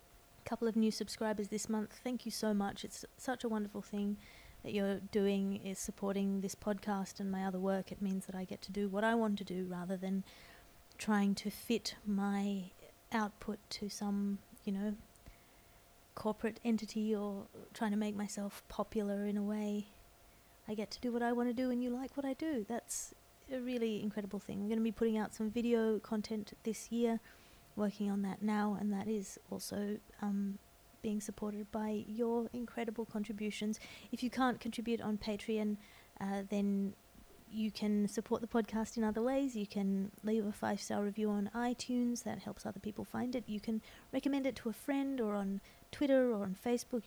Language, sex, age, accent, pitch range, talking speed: English, female, 30-49, Australian, 205-230 Hz, 190 wpm